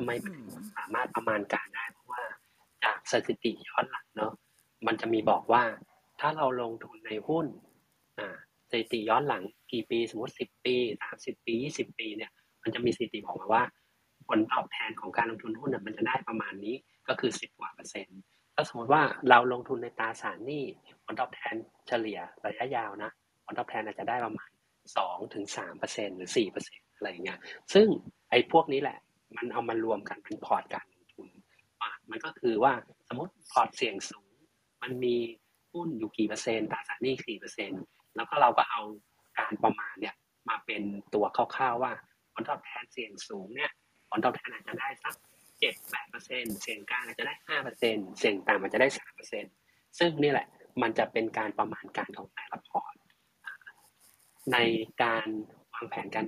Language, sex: Thai, male